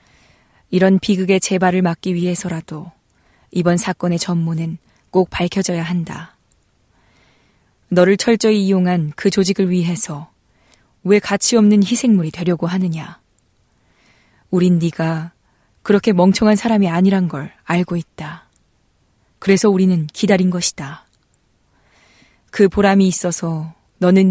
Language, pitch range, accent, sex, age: Korean, 170-190 Hz, native, female, 20-39